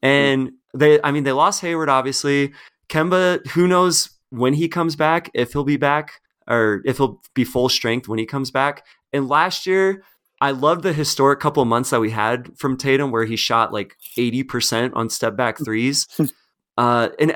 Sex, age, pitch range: male, 30-49, 115-150 Hz